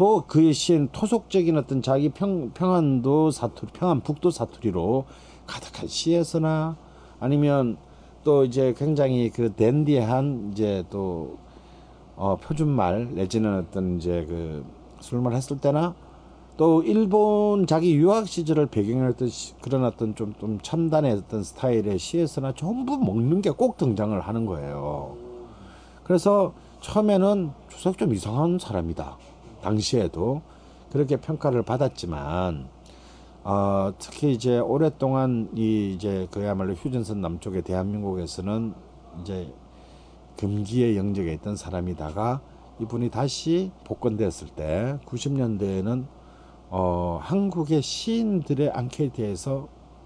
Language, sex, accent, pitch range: Korean, male, native, 100-155 Hz